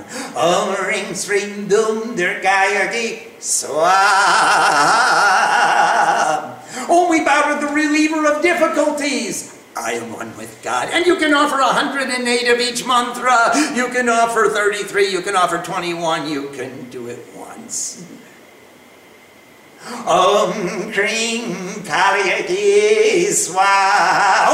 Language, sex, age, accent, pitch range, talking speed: English, male, 50-69, American, 205-270 Hz, 100 wpm